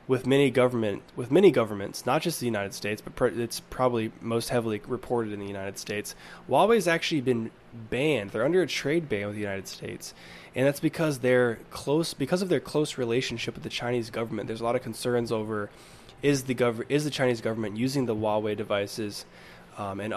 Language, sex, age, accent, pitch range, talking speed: English, male, 10-29, American, 110-135 Hz, 200 wpm